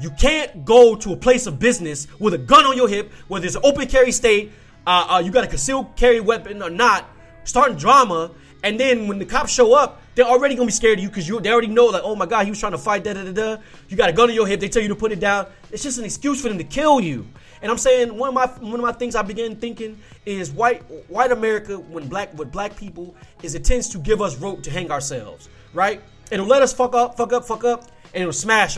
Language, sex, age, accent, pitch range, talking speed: English, male, 30-49, American, 175-230 Hz, 275 wpm